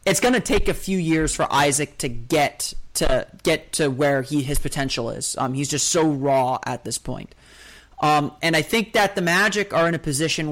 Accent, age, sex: American, 30-49, male